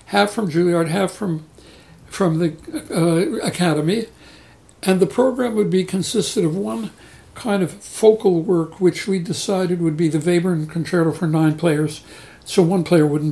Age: 60-79